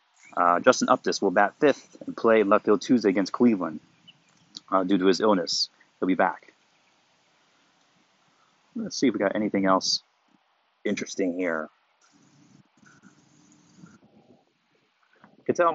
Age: 30-49